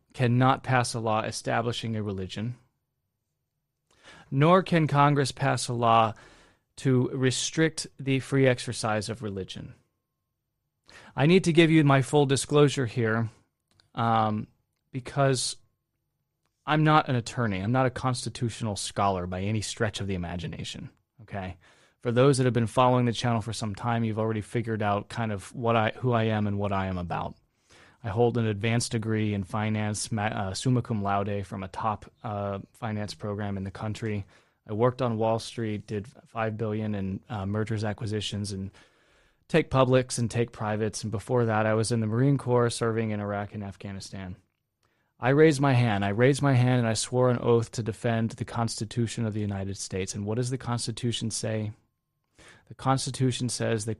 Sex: male